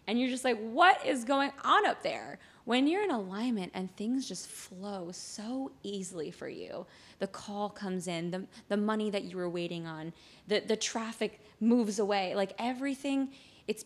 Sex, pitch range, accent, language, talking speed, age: female, 185-245 Hz, American, English, 180 wpm, 20-39